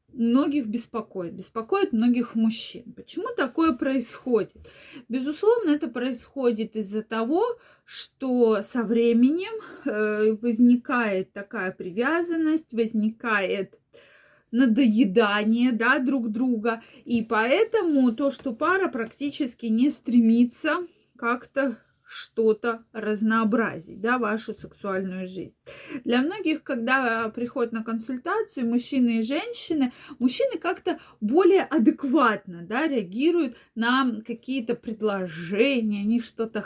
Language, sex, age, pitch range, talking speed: Russian, female, 30-49, 220-275 Hz, 95 wpm